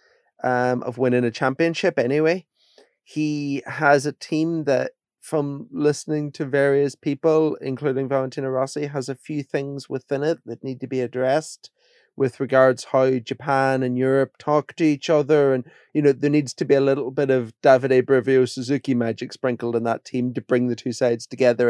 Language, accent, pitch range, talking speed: English, British, 125-155 Hz, 180 wpm